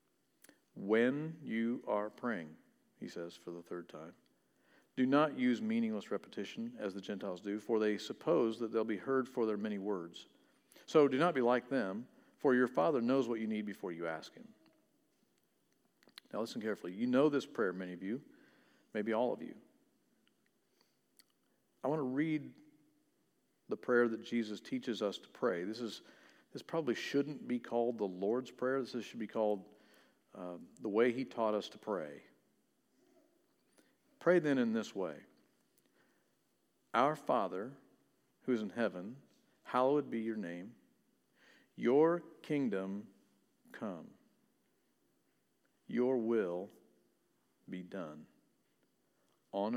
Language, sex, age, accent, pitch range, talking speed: English, male, 50-69, American, 105-130 Hz, 140 wpm